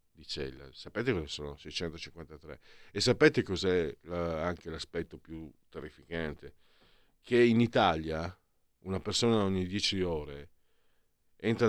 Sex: male